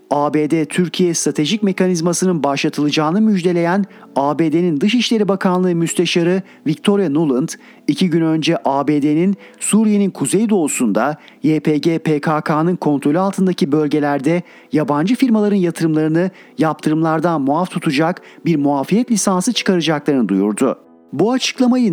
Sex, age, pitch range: male, 40-59, 150-185 Hz